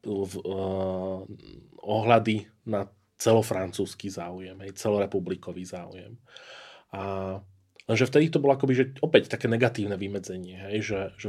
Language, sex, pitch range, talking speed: Slovak, male, 95-115 Hz, 115 wpm